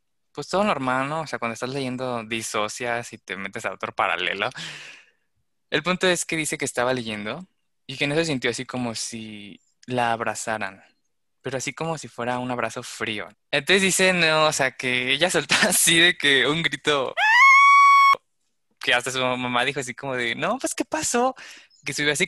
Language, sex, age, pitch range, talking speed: Spanish, male, 20-39, 120-160 Hz, 190 wpm